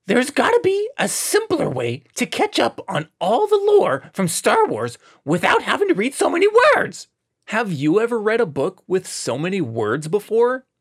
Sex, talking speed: male, 190 wpm